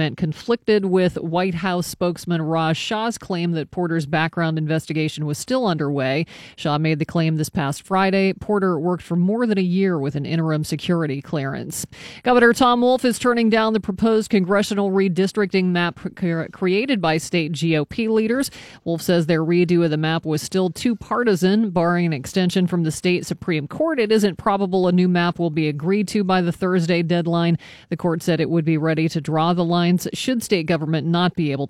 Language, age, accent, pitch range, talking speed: English, 40-59, American, 165-205 Hz, 190 wpm